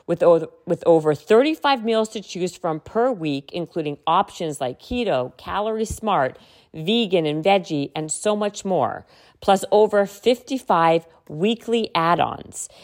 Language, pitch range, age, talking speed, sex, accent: English, 165-220 Hz, 40-59, 125 wpm, female, American